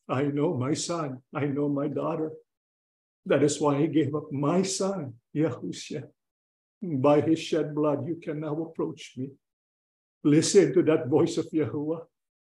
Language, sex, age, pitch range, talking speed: English, male, 50-69, 150-200 Hz, 155 wpm